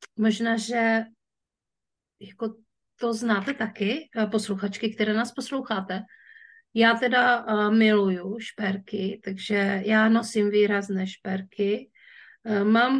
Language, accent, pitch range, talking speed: Czech, native, 200-230 Hz, 90 wpm